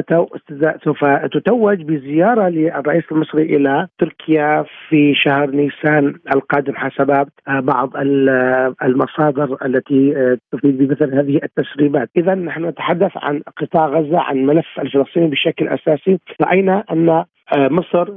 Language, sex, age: Arabic, male, 40-59